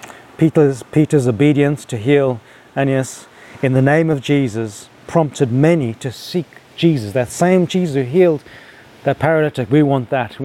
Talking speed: 155 wpm